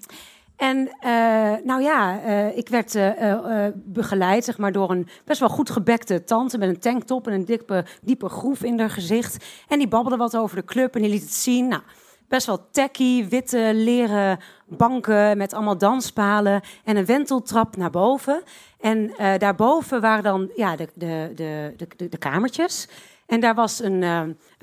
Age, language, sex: 40-59, Dutch, female